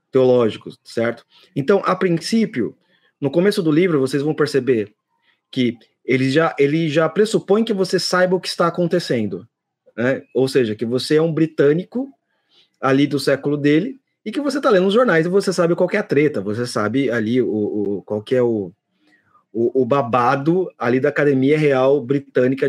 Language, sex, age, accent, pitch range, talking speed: Portuguese, male, 30-49, Brazilian, 125-165 Hz, 180 wpm